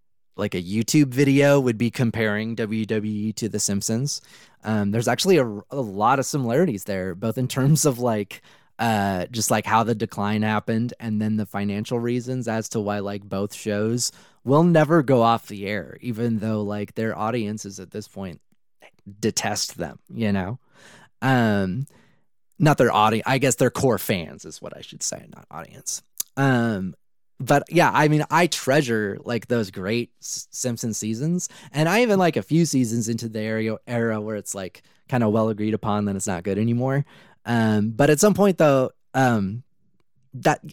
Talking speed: 180 wpm